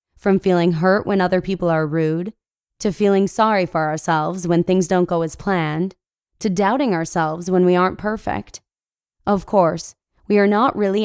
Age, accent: 20-39, American